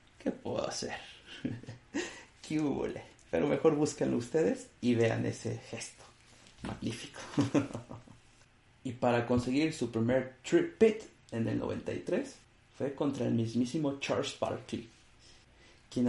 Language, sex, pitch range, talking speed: Spanish, male, 115-135 Hz, 110 wpm